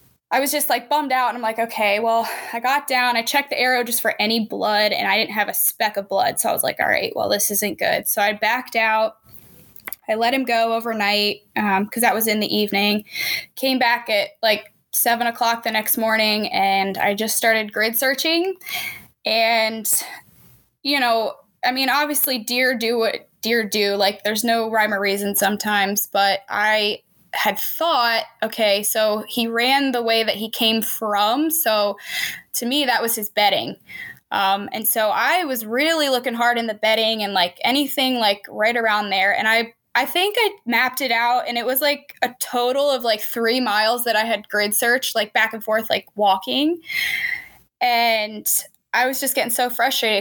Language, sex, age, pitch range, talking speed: English, female, 10-29, 215-255 Hz, 195 wpm